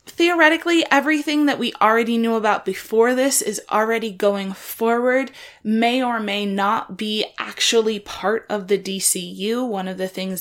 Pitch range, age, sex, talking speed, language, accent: 185-250 Hz, 20-39, female, 155 wpm, English, American